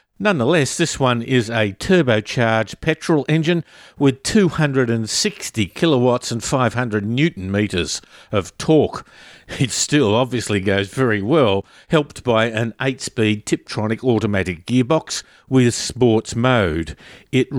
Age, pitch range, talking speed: 50-69, 100-135 Hz, 115 wpm